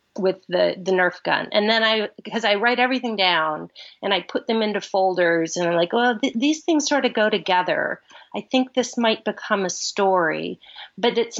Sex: female